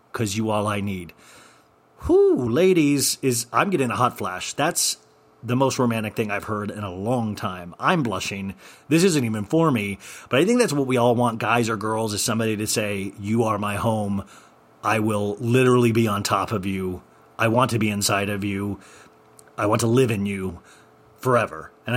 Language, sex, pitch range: English, male, 105-130 Hz